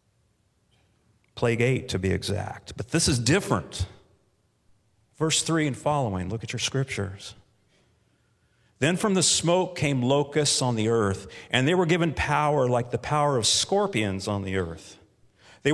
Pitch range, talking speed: 110-155 Hz, 155 wpm